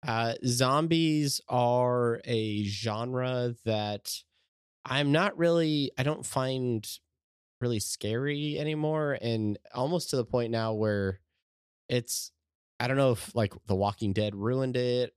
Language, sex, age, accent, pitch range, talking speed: English, male, 20-39, American, 95-120 Hz, 130 wpm